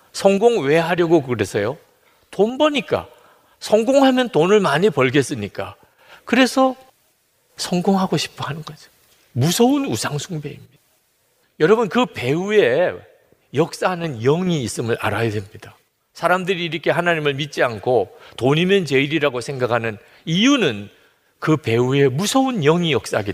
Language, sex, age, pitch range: Korean, male, 40-59, 140-225 Hz